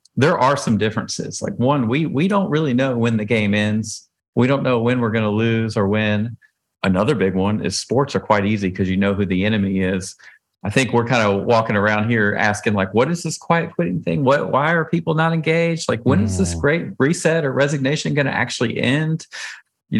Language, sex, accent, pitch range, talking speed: English, male, American, 105-135 Hz, 225 wpm